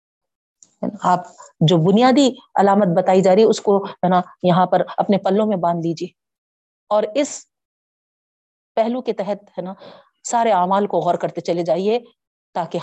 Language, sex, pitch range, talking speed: Urdu, female, 180-235 Hz, 155 wpm